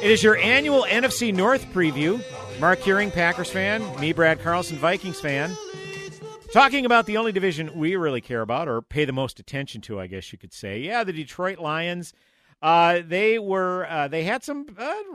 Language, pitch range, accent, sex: English, 145-200 Hz, American, male